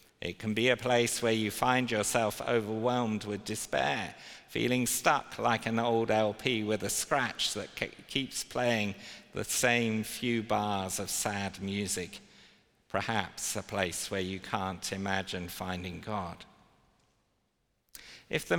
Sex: male